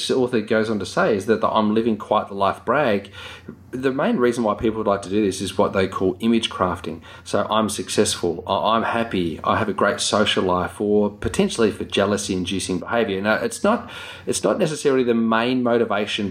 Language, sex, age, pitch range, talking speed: English, male, 30-49, 95-110 Hz, 200 wpm